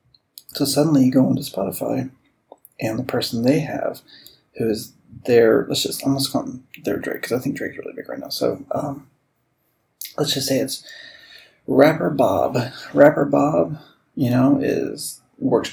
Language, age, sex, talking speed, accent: English, 30-49, male, 165 wpm, American